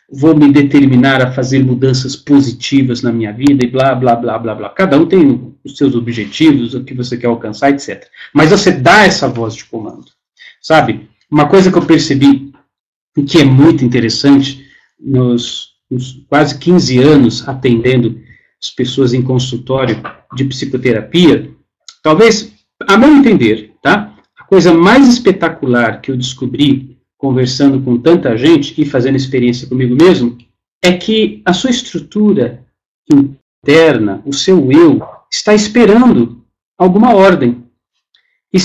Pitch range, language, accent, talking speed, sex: 125-175 Hz, Portuguese, Brazilian, 145 wpm, male